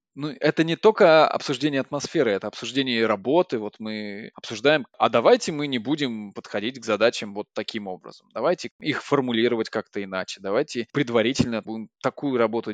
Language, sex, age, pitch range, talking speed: Russian, male, 20-39, 105-135 Hz, 155 wpm